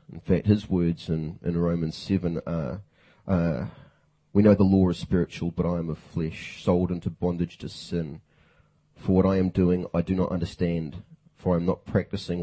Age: 30-49